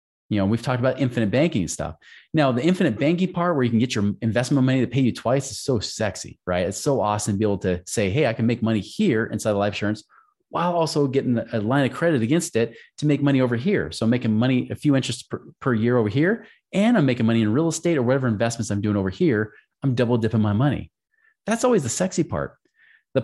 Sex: male